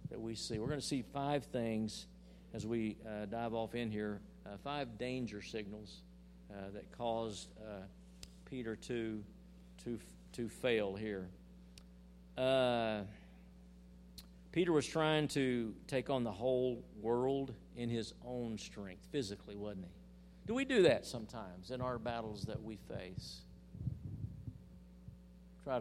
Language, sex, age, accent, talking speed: English, male, 50-69, American, 135 wpm